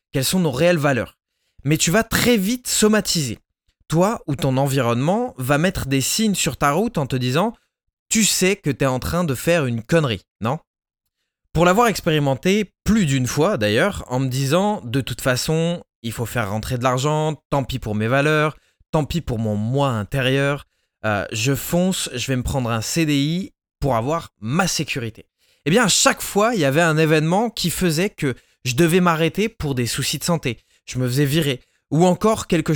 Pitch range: 125-175 Hz